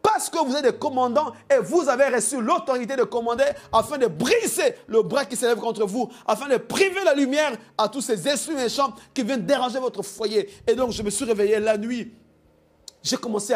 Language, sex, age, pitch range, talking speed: French, male, 50-69, 215-280 Hz, 210 wpm